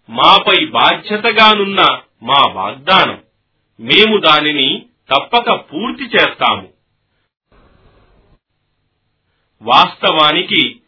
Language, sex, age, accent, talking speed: Telugu, male, 40-59, native, 55 wpm